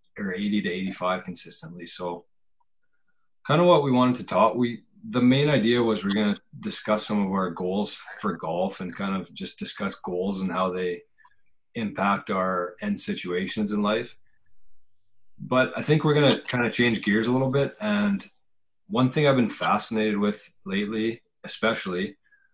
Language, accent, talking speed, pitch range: English, American, 175 wpm, 100-135 Hz